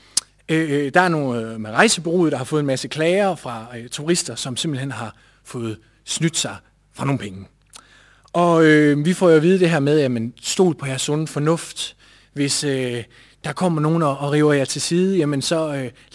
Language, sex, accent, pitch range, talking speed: Danish, male, native, 135-185 Hz, 200 wpm